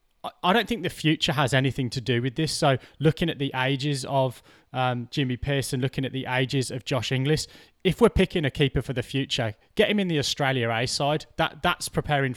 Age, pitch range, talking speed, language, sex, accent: 20-39, 130-150 Hz, 220 wpm, English, male, British